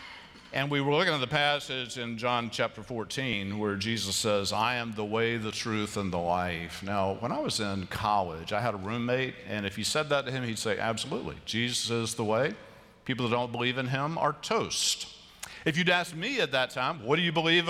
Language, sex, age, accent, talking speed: English, male, 50-69, American, 225 wpm